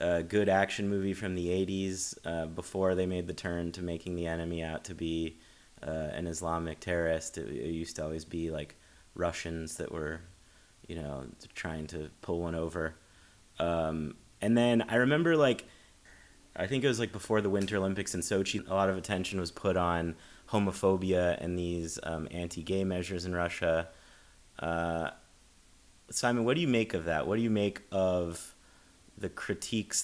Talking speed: 175 wpm